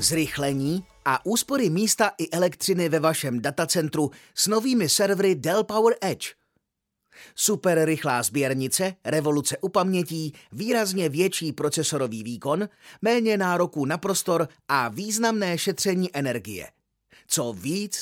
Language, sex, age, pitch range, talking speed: Czech, male, 30-49, 145-185 Hz, 110 wpm